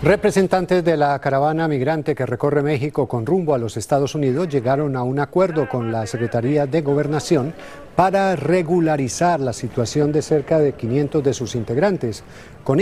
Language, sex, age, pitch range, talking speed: Spanish, male, 50-69, 125-160 Hz, 165 wpm